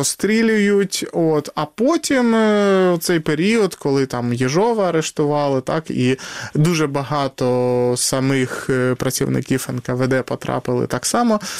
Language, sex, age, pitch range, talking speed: Ukrainian, male, 20-39, 130-165 Hz, 105 wpm